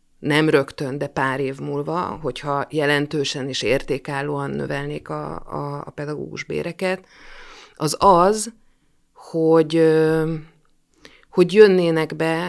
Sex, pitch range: female, 140-170 Hz